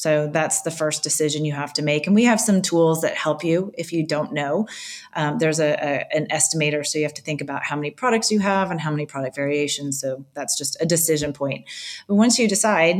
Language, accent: English, American